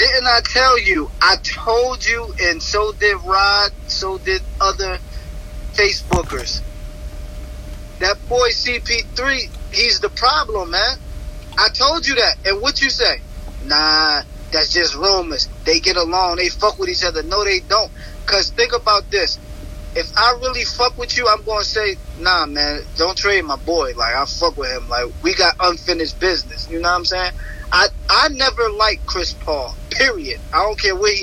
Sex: male